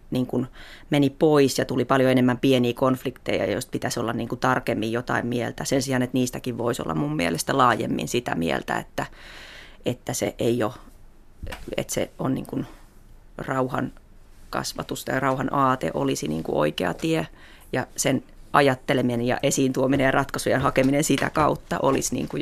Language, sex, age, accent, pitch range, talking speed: Finnish, female, 30-49, native, 125-140 Hz, 130 wpm